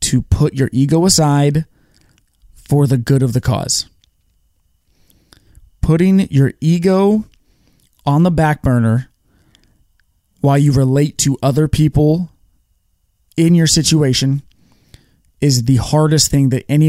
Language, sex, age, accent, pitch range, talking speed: English, male, 20-39, American, 125-155 Hz, 115 wpm